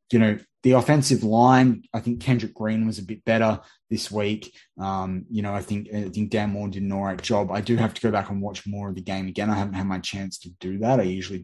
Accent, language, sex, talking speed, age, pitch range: Australian, English, male, 275 wpm, 20-39, 90-105 Hz